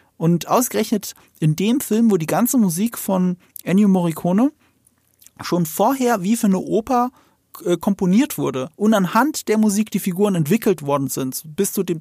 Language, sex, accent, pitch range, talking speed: German, male, German, 170-220 Hz, 165 wpm